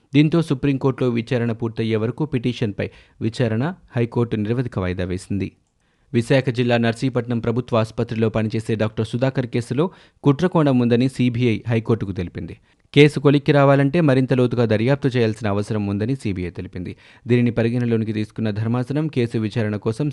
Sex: male